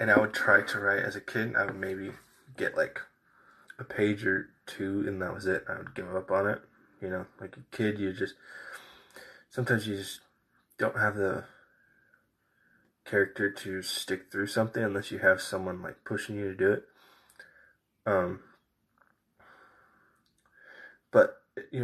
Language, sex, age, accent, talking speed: English, male, 20-39, American, 165 wpm